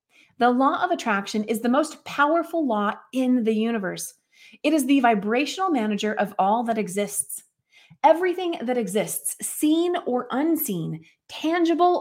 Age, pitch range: 30-49, 215-295 Hz